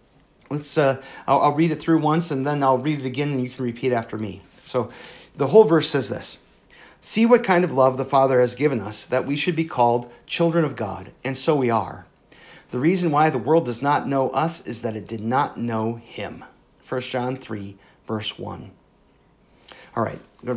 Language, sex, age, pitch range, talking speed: English, male, 40-59, 120-155 Hz, 215 wpm